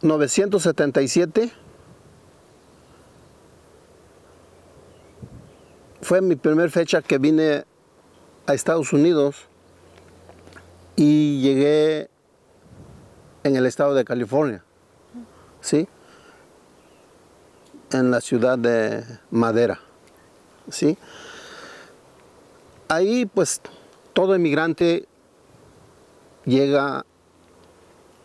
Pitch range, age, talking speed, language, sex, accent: 100-155 Hz, 50-69, 60 wpm, English, male, Mexican